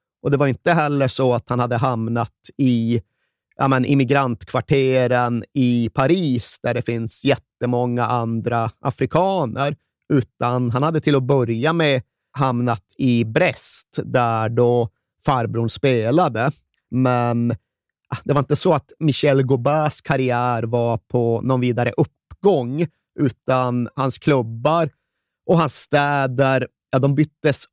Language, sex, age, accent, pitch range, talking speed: Swedish, male, 30-49, native, 120-140 Hz, 130 wpm